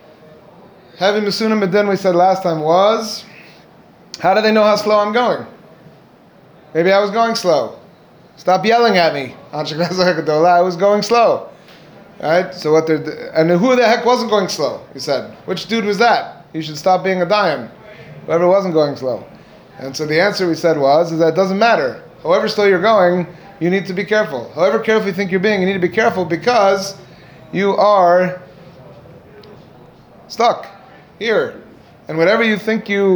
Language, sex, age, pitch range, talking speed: English, male, 30-49, 160-200 Hz, 180 wpm